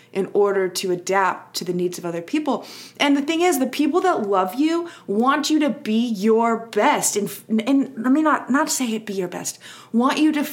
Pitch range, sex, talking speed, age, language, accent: 200-275 Hz, female, 220 wpm, 20-39, English, American